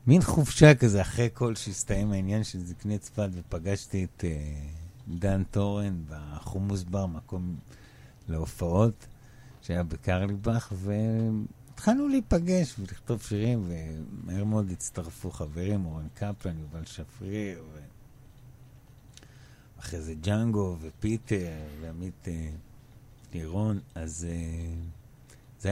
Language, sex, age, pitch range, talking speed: Hebrew, male, 60-79, 95-125 Hz, 100 wpm